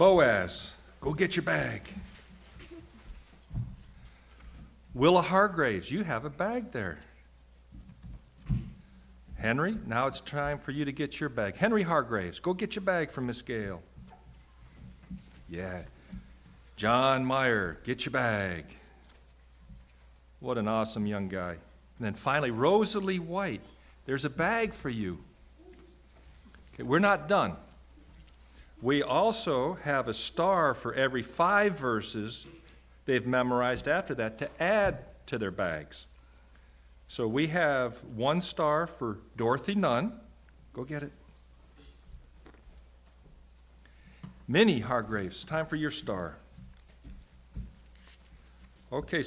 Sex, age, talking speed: male, 50-69, 110 wpm